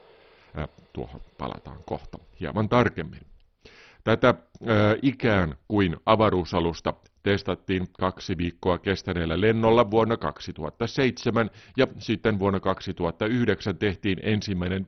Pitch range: 85-115 Hz